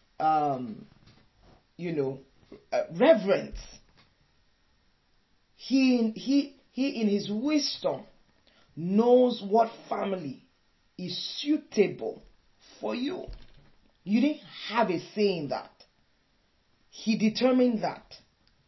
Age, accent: 40-59, Nigerian